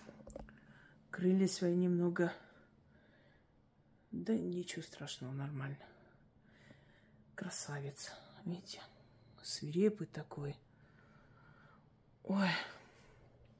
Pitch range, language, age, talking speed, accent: 150-195 Hz, Russian, 30-49, 55 wpm, native